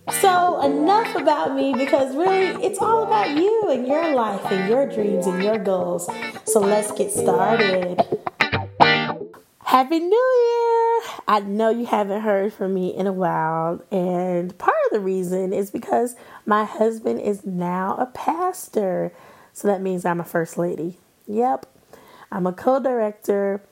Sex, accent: female, American